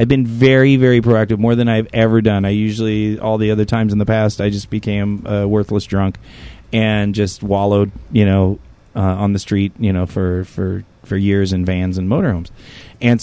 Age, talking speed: 30-49, 205 wpm